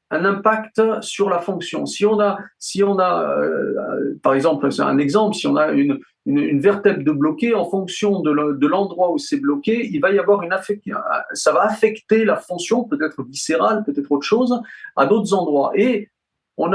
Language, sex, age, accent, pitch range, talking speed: French, male, 50-69, French, 155-215 Hz, 195 wpm